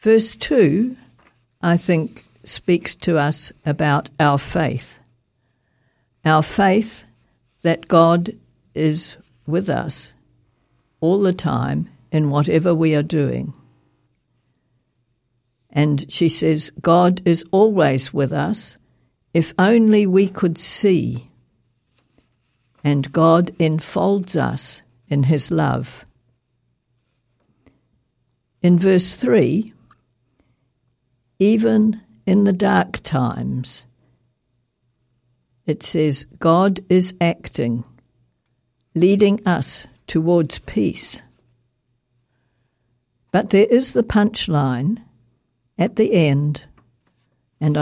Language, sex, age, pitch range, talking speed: English, female, 60-79, 125-175 Hz, 90 wpm